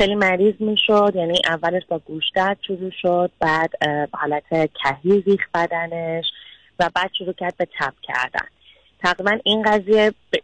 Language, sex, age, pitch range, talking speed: Persian, female, 30-49, 165-190 Hz, 145 wpm